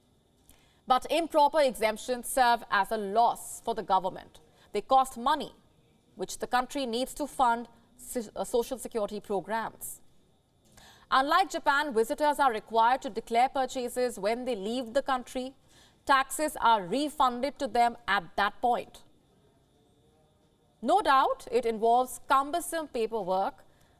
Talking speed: 125 wpm